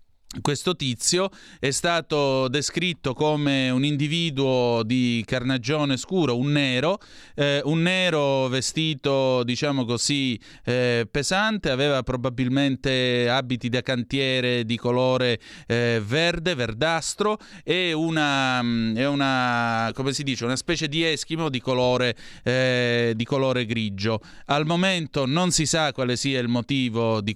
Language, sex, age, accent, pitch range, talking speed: Italian, male, 30-49, native, 120-155 Hz, 125 wpm